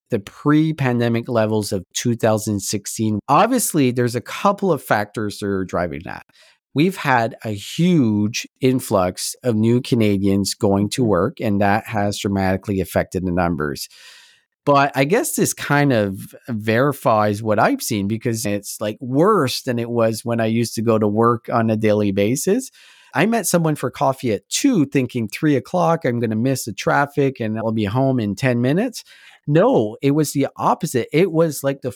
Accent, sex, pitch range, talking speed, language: American, male, 110-150 Hz, 175 wpm, English